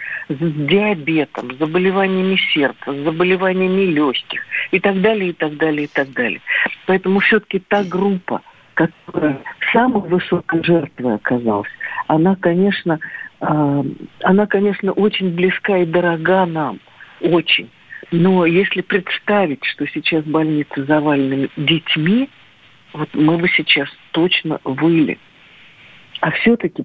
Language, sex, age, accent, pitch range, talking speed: Russian, female, 50-69, native, 150-190 Hz, 115 wpm